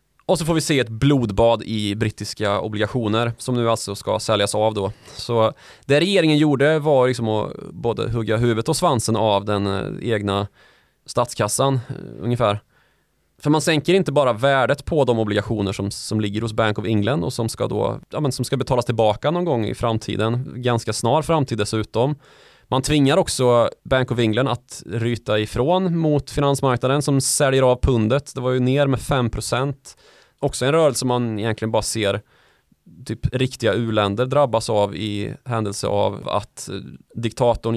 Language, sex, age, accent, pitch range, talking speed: Swedish, male, 20-39, native, 110-135 Hz, 170 wpm